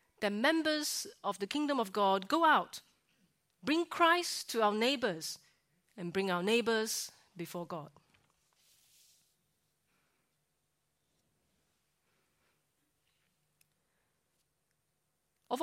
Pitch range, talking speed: 175-225 Hz, 80 wpm